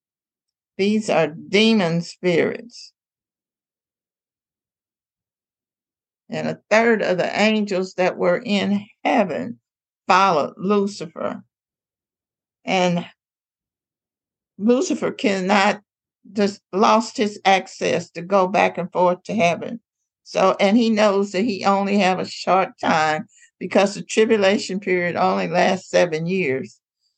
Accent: American